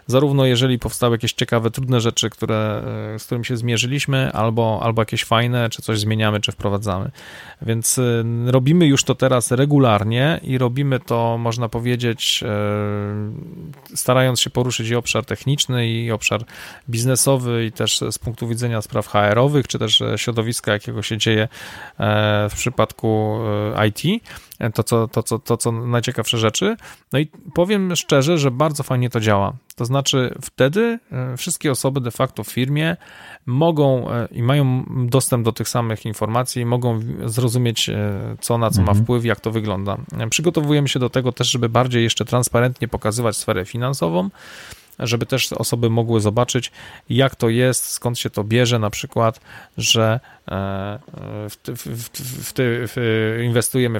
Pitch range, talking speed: 110-130 Hz, 145 wpm